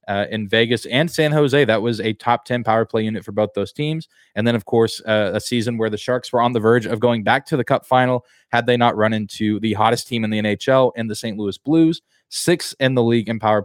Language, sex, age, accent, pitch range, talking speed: English, male, 20-39, American, 105-135 Hz, 270 wpm